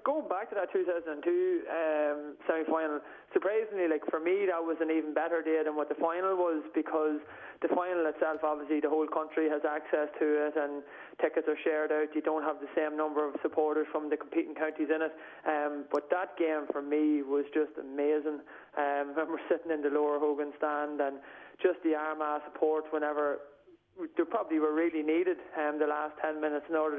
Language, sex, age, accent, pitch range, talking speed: English, male, 20-39, Irish, 150-165 Hz, 200 wpm